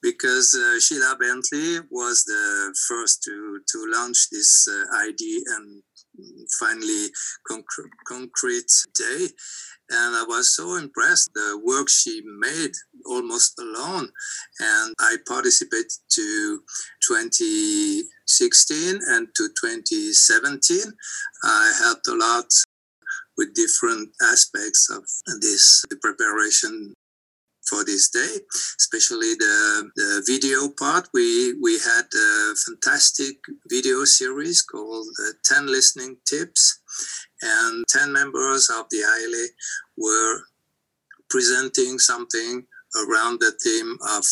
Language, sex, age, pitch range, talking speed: English, male, 50-69, 330-390 Hz, 110 wpm